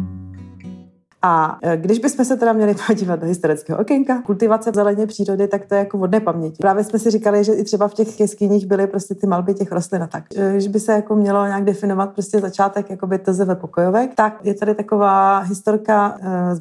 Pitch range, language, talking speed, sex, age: 180-210 Hz, Czech, 200 wpm, female, 30-49